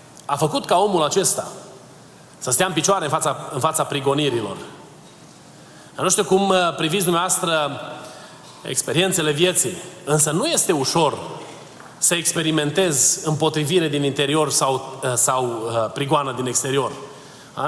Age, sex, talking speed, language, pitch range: 30-49, male, 125 wpm, Romanian, 140-175 Hz